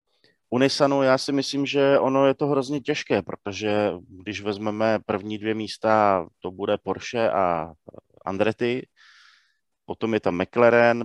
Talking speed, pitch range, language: 135 wpm, 100-110 Hz, Slovak